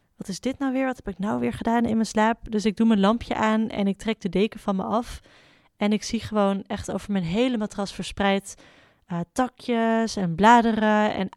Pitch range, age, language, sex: 190-230 Hz, 20-39, Dutch, female